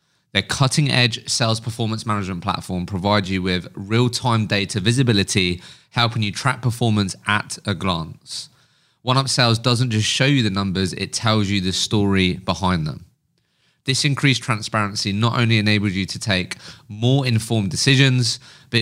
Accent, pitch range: British, 95-125 Hz